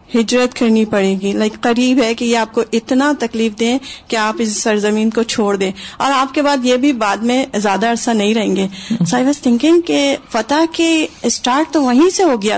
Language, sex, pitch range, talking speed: Urdu, female, 220-265 Hz, 225 wpm